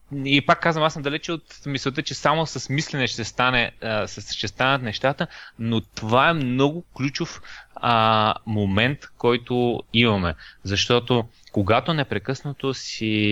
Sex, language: male, Bulgarian